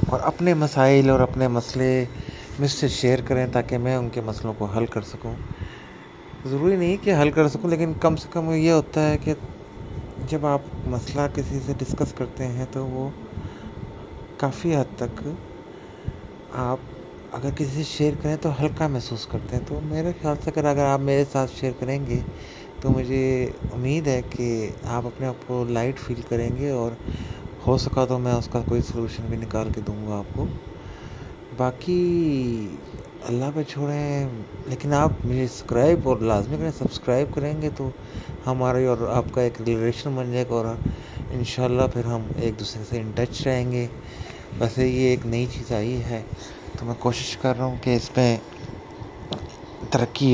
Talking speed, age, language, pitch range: 180 wpm, 30-49, Urdu, 115-140 Hz